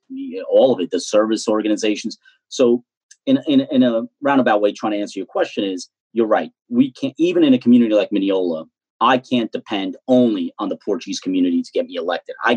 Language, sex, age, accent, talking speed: English, male, 30-49, American, 205 wpm